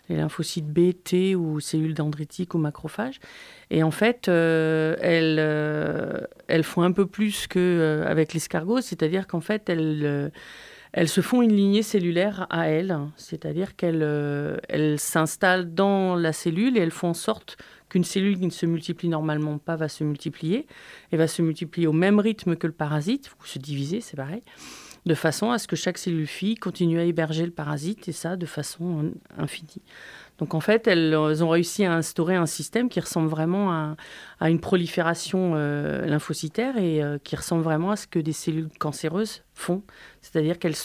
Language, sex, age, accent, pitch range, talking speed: French, female, 40-59, French, 155-185 Hz, 185 wpm